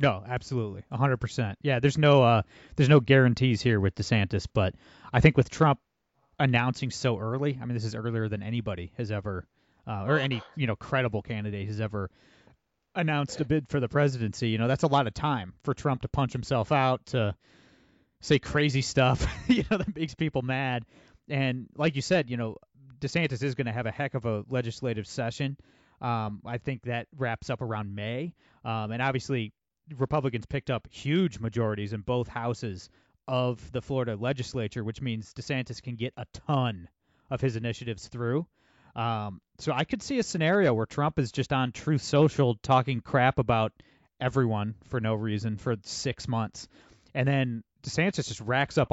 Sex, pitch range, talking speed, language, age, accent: male, 115-140 Hz, 185 wpm, English, 30-49, American